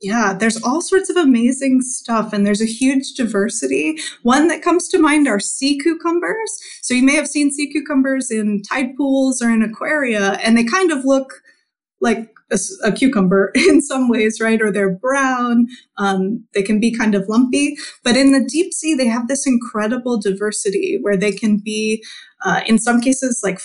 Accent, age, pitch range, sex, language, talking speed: American, 20-39, 210-270 Hz, female, English, 190 wpm